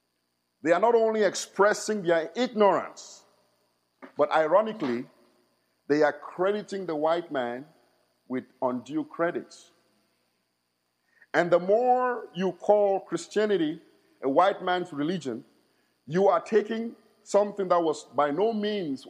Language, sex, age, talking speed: English, male, 50-69, 115 wpm